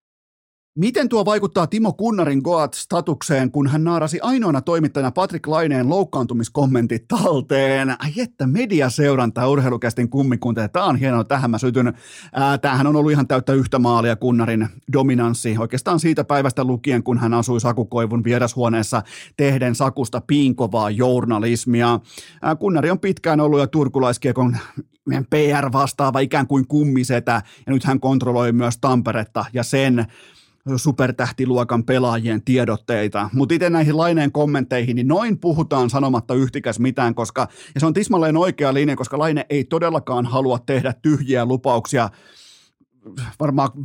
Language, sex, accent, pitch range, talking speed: Finnish, male, native, 120-150 Hz, 135 wpm